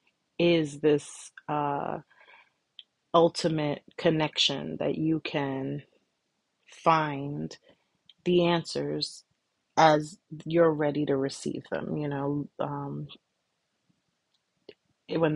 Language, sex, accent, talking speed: English, female, American, 80 wpm